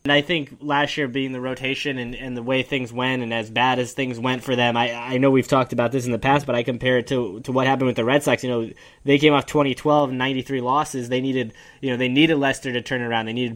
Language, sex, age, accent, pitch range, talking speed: English, male, 10-29, American, 130-150 Hz, 285 wpm